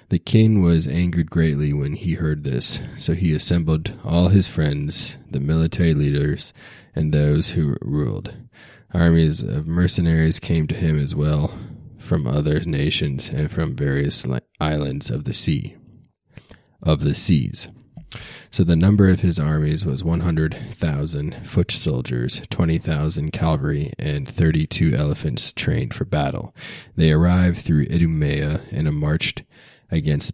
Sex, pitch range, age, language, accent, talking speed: male, 75-90 Hz, 20-39, English, American, 140 wpm